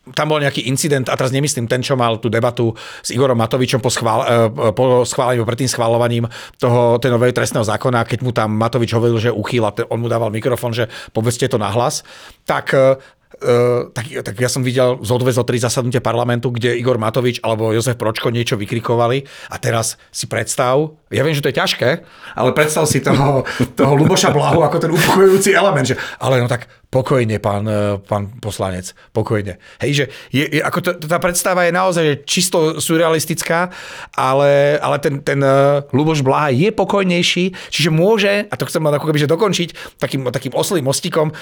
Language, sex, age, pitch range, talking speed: Slovak, male, 40-59, 120-155 Hz, 180 wpm